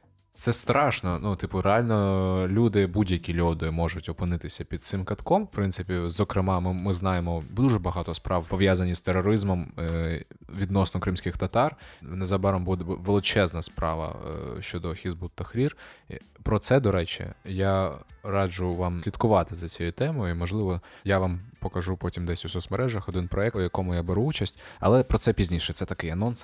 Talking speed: 155 wpm